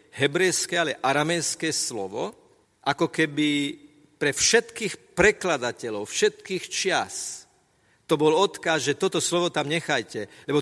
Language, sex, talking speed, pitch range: Slovak, male, 115 wpm, 125-160 Hz